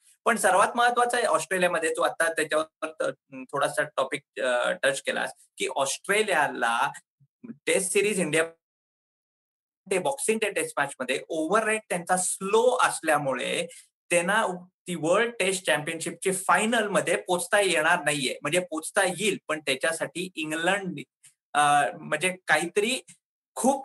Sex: male